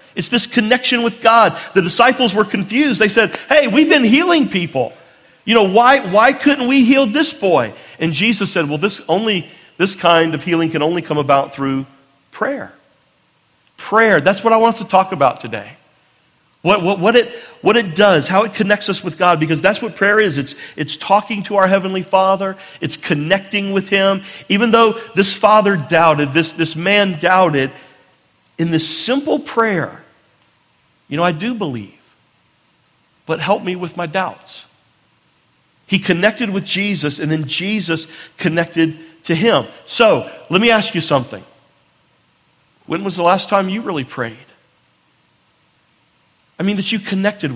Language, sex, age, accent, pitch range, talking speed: English, male, 40-59, American, 165-215 Hz, 170 wpm